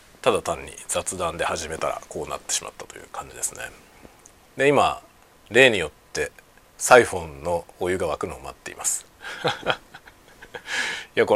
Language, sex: Japanese, male